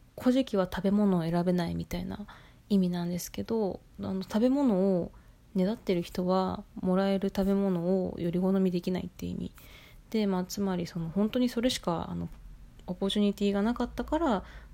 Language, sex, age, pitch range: Japanese, female, 20-39, 180-225 Hz